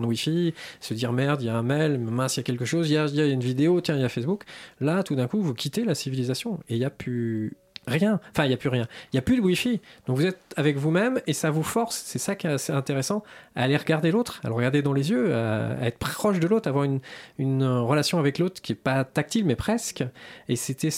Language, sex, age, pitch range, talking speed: French, male, 20-39, 125-175 Hz, 285 wpm